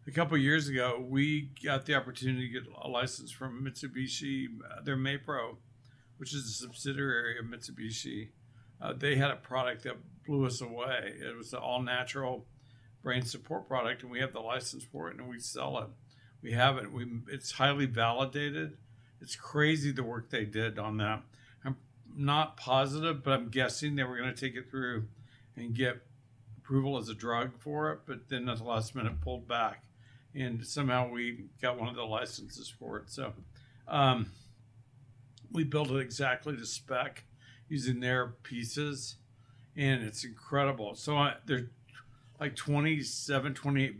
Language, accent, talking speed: English, American, 170 wpm